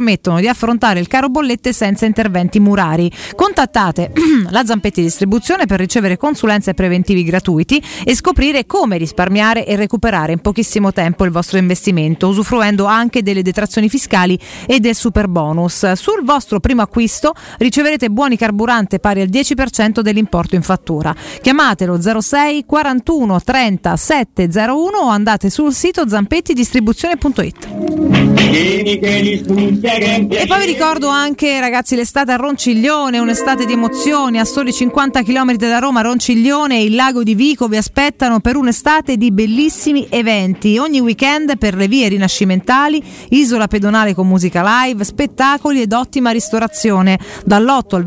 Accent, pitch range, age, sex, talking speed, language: native, 200-265 Hz, 40-59, female, 135 wpm, Italian